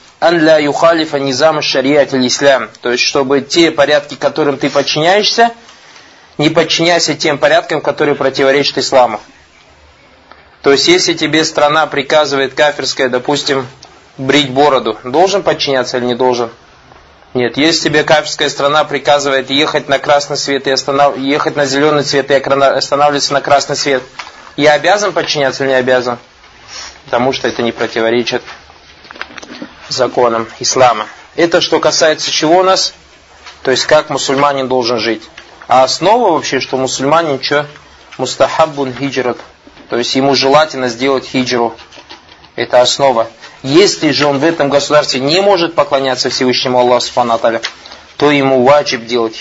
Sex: male